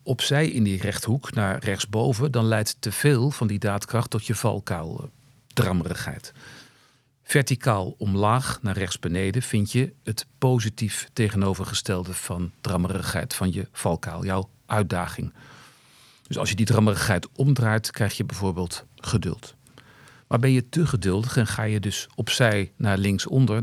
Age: 50-69